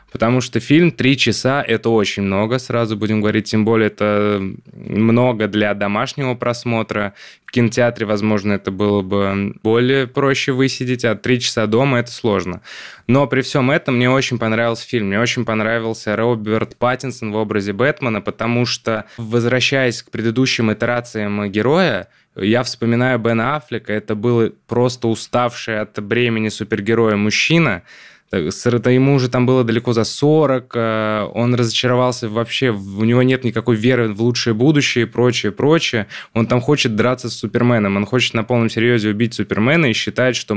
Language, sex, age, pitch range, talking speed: Russian, male, 20-39, 110-125 Hz, 160 wpm